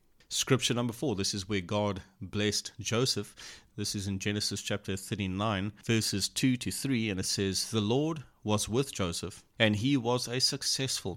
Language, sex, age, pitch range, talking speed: English, male, 30-49, 100-125 Hz, 170 wpm